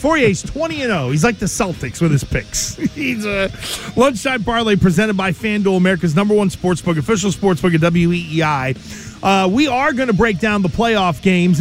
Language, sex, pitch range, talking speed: English, male, 175-225 Hz, 175 wpm